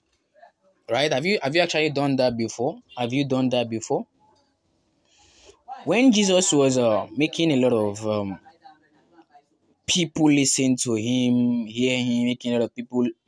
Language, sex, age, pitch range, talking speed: English, male, 20-39, 125-170 Hz, 155 wpm